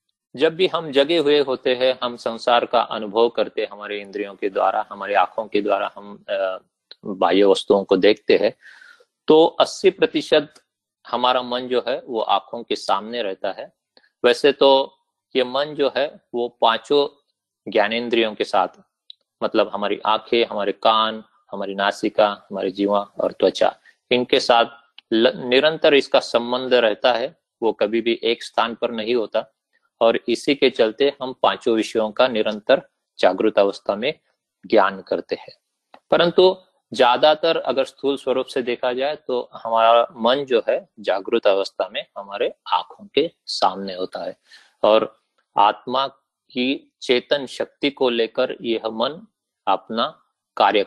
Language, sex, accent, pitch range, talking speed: Hindi, male, native, 110-140 Hz, 145 wpm